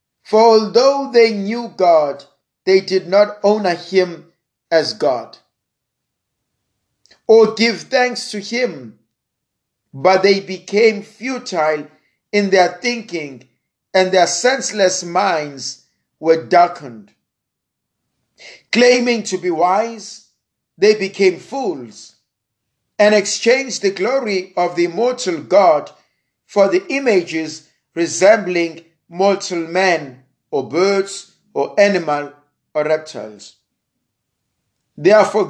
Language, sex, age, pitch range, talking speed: English, male, 50-69, 155-220 Hz, 100 wpm